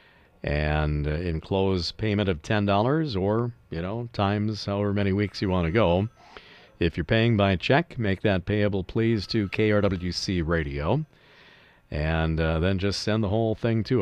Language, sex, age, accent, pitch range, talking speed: English, male, 50-69, American, 90-120 Hz, 160 wpm